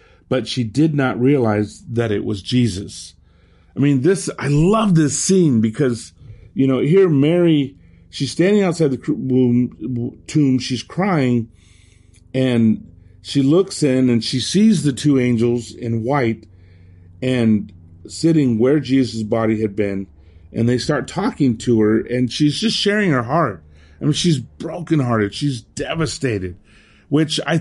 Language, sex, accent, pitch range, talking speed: English, male, American, 105-145 Hz, 145 wpm